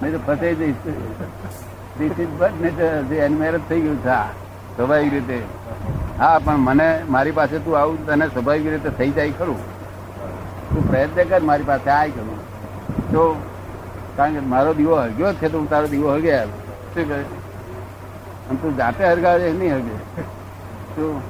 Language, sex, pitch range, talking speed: Gujarati, male, 100-155 Hz, 115 wpm